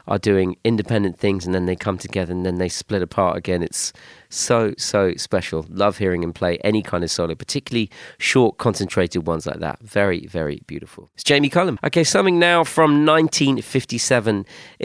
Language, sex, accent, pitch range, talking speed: French, male, British, 90-120 Hz, 180 wpm